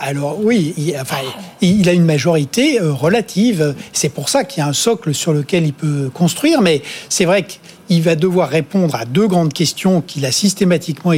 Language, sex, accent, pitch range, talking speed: French, male, French, 155-200 Hz, 195 wpm